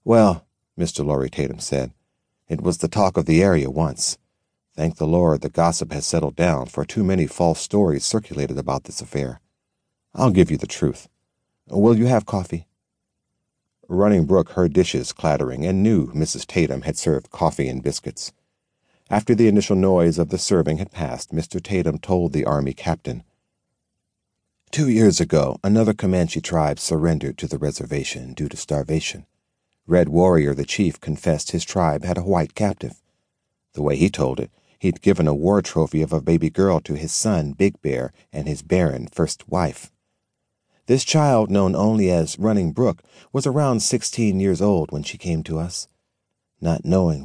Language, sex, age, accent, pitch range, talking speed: English, male, 50-69, American, 75-100 Hz, 170 wpm